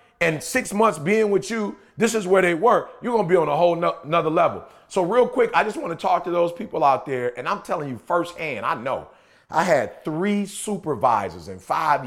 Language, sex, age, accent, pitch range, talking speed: English, male, 40-59, American, 160-195 Hz, 230 wpm